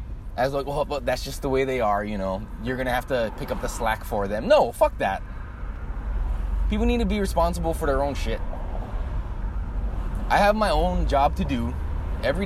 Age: 20-39